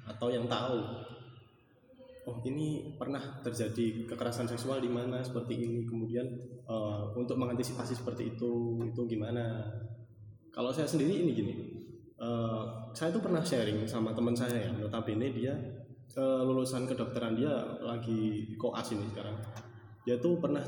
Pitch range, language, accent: 115-130 Hz, Indonesian, native